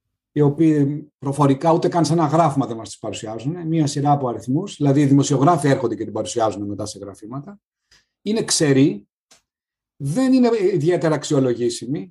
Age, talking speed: 30-49, 160 wpm